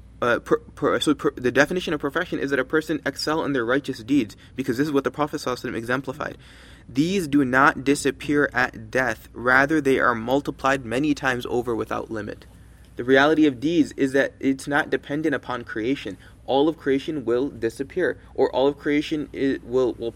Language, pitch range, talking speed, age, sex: English, 130-155 Hz, 190 wpm, 20-39, male